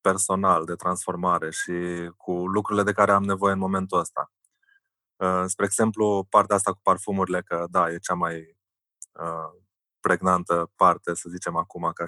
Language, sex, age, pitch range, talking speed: Romanian, male, 20-39, 90-100 Hz, 150 wpm